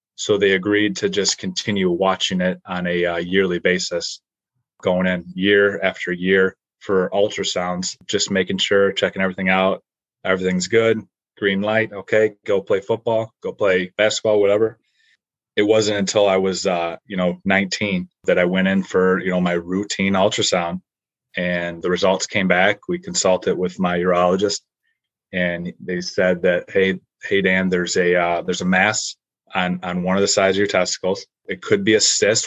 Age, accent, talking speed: 30-49, American, 175 wpm